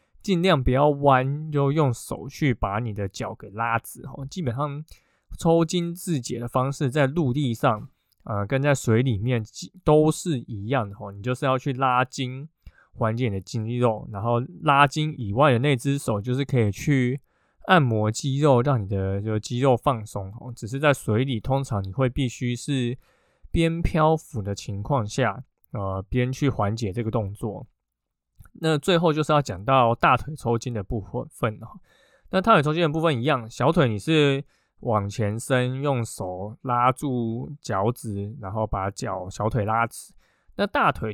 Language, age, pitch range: Chinese, 20-39, 110-140 Hz